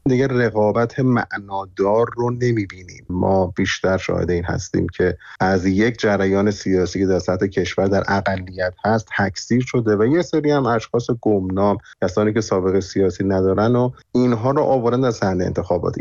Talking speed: 160 wpm